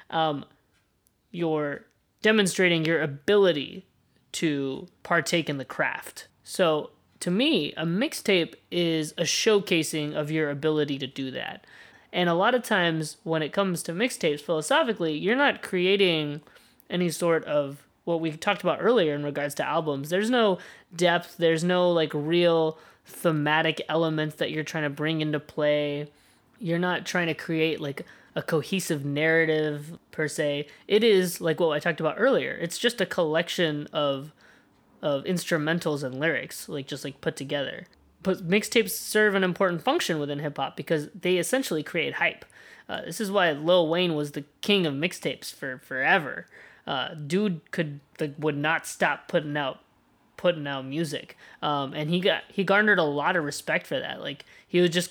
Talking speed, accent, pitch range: 165 wpm, American, 150-180 Hz